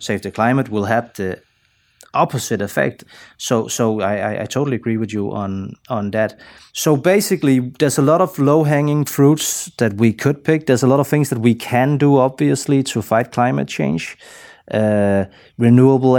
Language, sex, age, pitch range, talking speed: English, male, 30-49, 110-140 Hz, 175 wpm